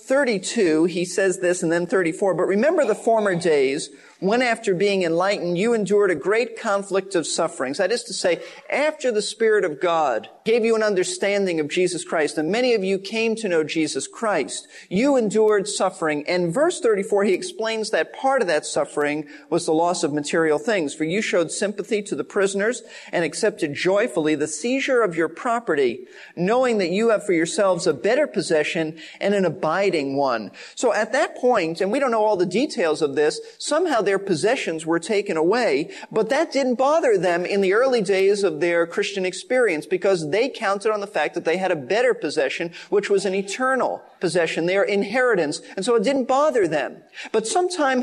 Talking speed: 195 wpm